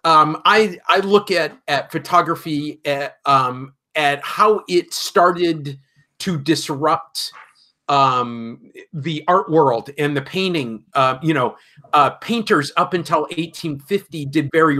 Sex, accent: male, American